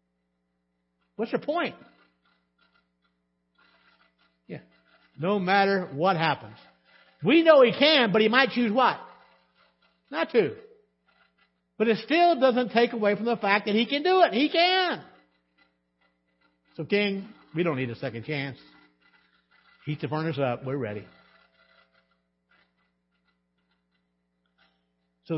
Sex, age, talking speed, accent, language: male, 60-79, 120 wpm, American, English